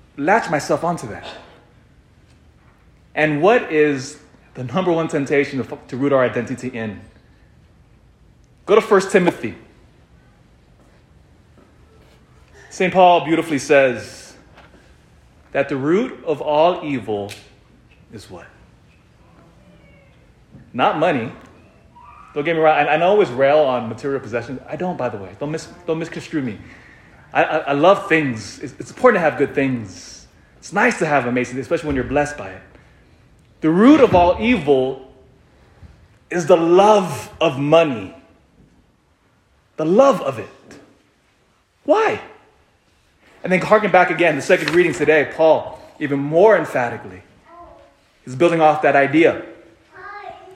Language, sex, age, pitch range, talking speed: English, male, 30-49, 125-180 Hz, 130 wpm